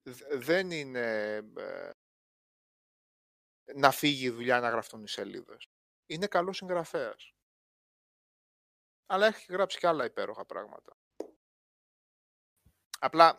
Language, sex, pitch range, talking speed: Greek, male, 135-180 Hz, 95 wpm